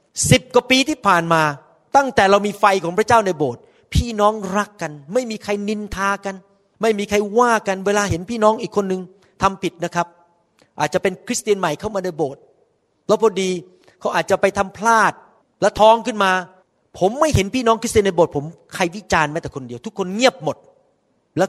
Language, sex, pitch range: Thai, male, 185-235 Hz